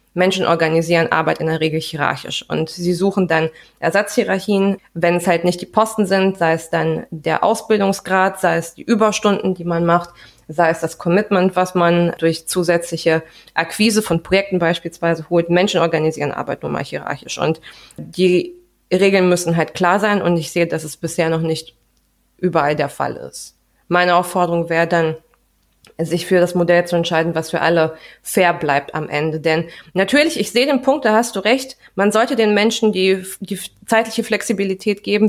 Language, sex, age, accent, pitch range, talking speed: German, female, 20-39, German, 165-200 Hz, 180 wpm